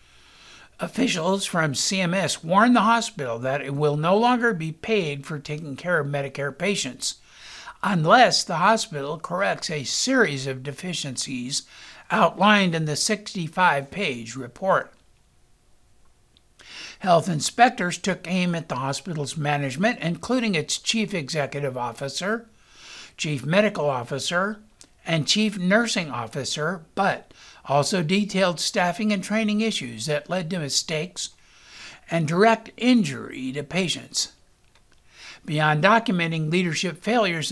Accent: American